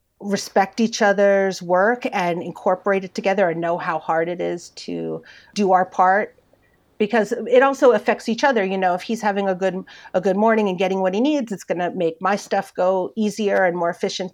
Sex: female